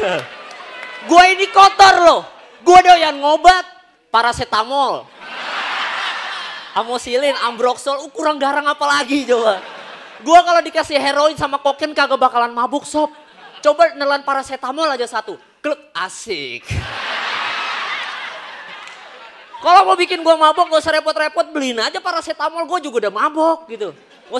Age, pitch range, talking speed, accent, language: 20-39, 225-315 Hz, 125 wpm, native, Indonesian